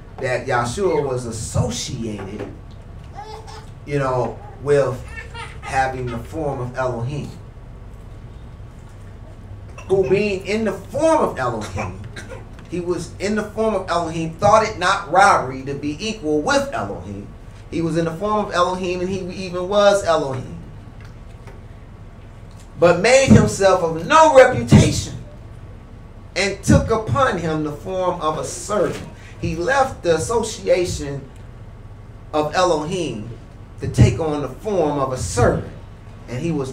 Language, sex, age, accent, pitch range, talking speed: English, male, 30-49, American, 105-155 Hz, 130 wpm